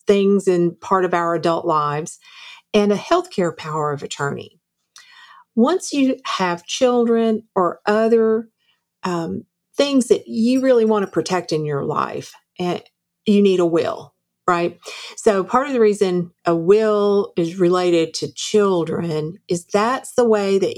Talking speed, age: 150 wpm, 50-69